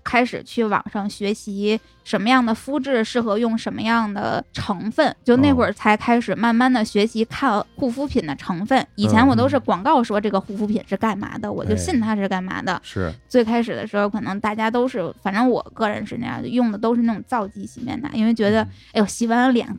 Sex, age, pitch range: female, 10-29, 210-245 Hz